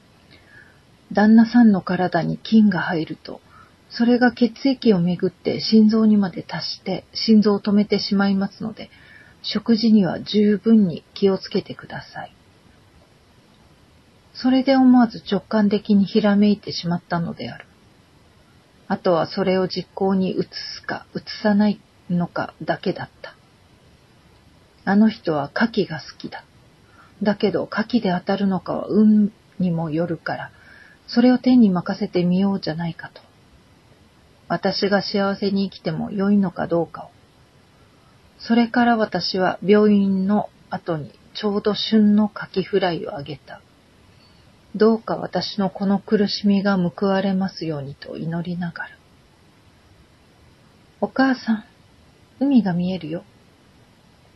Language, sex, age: Japanese, female, 40-59